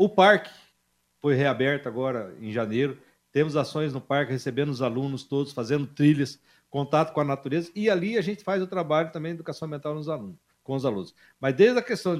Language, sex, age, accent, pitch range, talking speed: Portuguese, male, 60-79, Brazilian, 135-180 Hz, 200 wpm